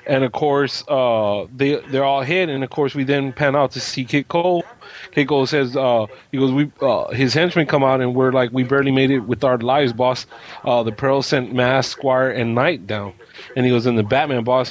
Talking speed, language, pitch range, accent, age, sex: 235 wpm, English, 125-145 Hz, American, 20-39, male